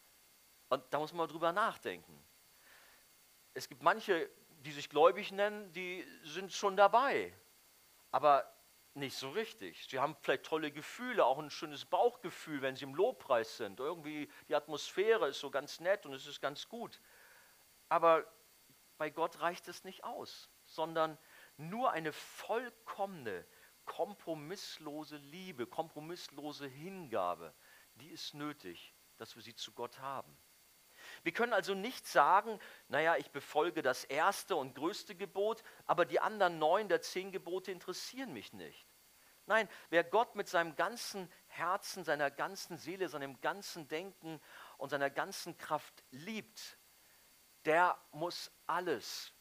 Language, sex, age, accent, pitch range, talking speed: German, male, 50-69, German, 150-195 Hz, 140 wpm